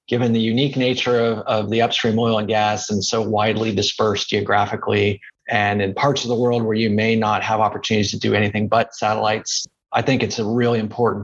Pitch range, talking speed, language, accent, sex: 110-125 Hz, 210 wpm, English, American, male